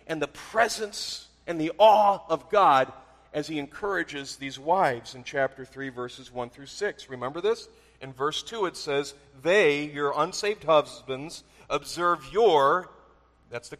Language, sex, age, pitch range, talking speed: English, male, 40-59, 140-190 Hz, 150 wpm